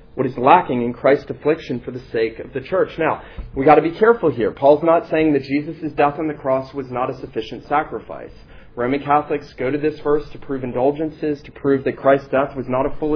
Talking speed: 235 wpm